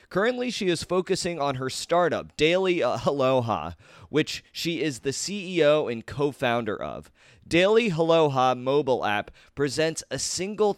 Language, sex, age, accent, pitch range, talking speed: English, male, 30-49, American, 130-165 Hz, 135 wpm